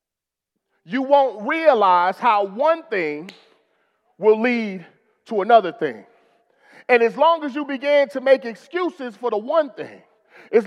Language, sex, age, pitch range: English, male, 30-49, 200-320 Hz